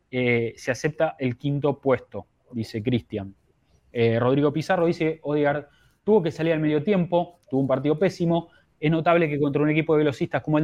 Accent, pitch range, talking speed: Argentinian, 120-155 Hz, 180 wpm